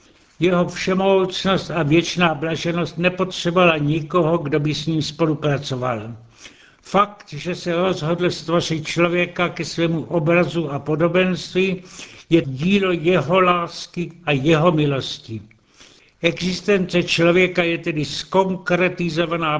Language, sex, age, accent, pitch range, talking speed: Czech, male, 70-89, native, 150-175 Hz, 105 wpm